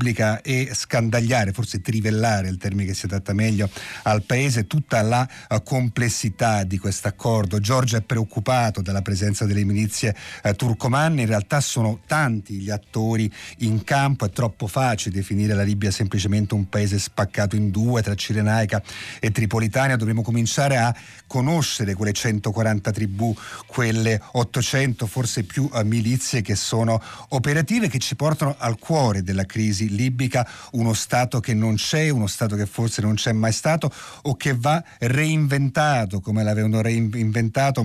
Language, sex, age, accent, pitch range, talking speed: Italian, male, 40-59, native, 105-125 Hz, 155 wpm